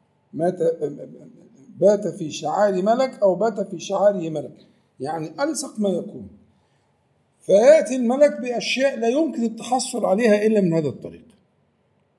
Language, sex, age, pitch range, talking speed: Arabic, male, 50-69, 165-235 Hz, 125 wpm